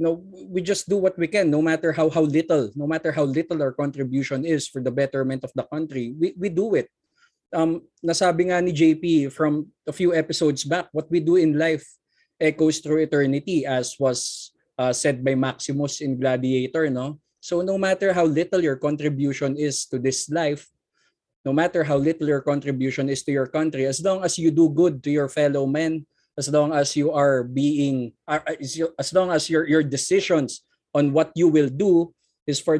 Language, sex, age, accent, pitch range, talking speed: Filipino, male, 20-39, native, 140-170 Hz, 195 wpm